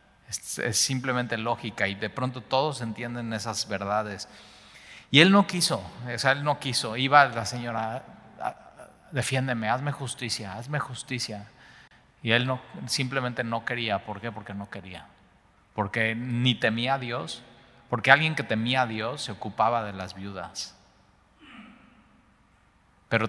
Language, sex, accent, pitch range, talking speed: Spanish, male, Mexican, 105-125 Hz, 140 wpm